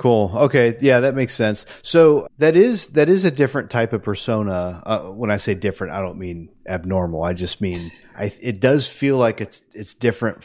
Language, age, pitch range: English, 30-49, 90-115 Hz